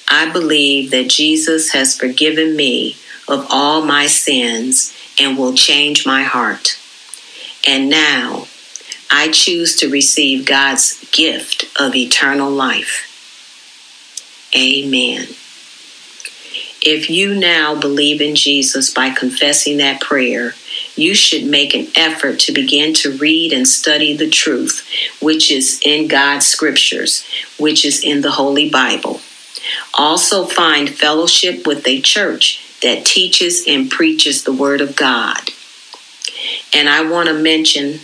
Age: 50-69